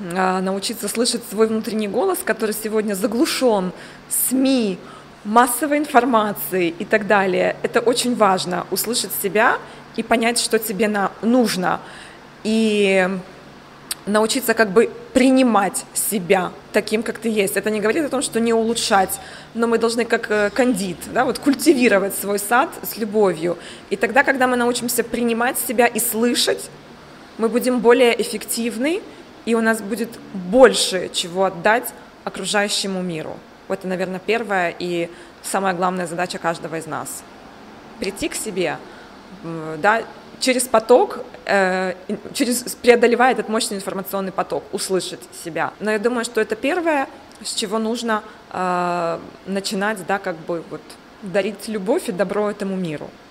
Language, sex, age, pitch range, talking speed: Russian, female, 20-39, 195-235 Hz, 130 wpm